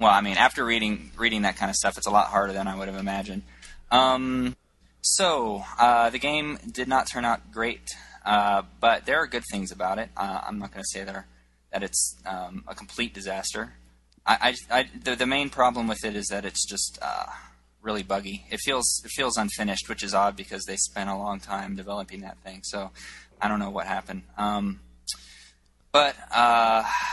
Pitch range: 95-115 Hz